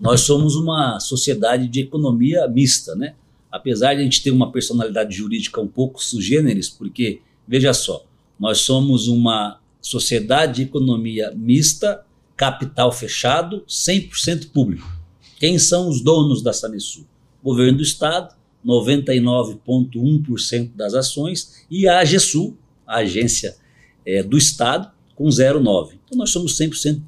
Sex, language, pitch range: male, Portuguese, 115-150 Hz